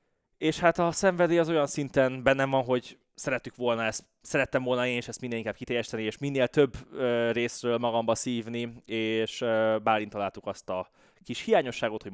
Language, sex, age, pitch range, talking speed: Hungarian, male, 20-39, 100-125 Hz, 175 wpm